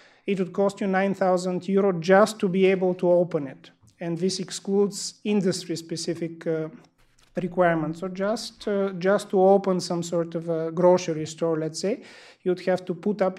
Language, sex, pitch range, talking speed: English, male, 170-195 Hz, 170 wpm